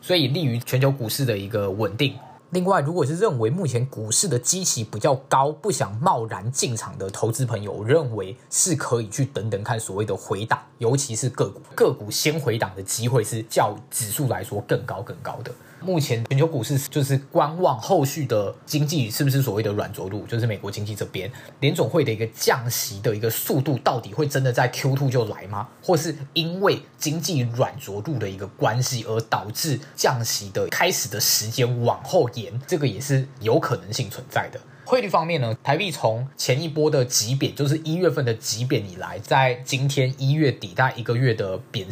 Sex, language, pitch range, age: male, Chinese, 115-145 Hz, 20-39